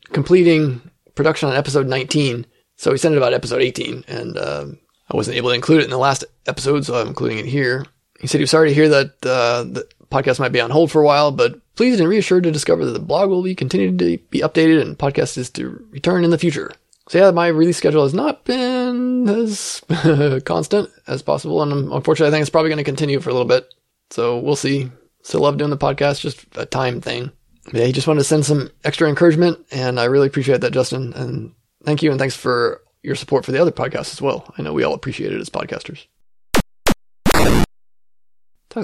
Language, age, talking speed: English, 20-39, 225 wpm